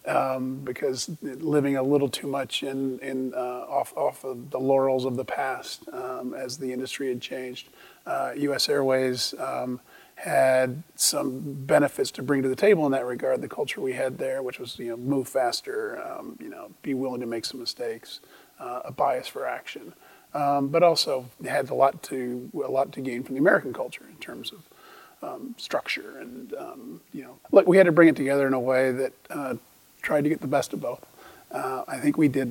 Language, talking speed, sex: English, 205 wpm, male